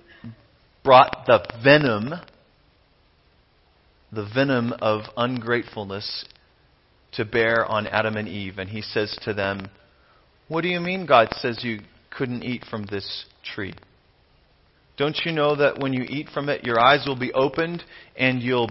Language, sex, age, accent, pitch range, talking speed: English, male, 40-59, American, 110-165 Hz, 150 wpm